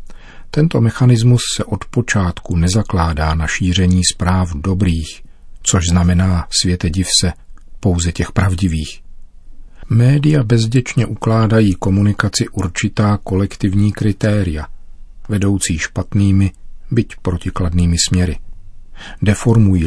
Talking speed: 90 wpm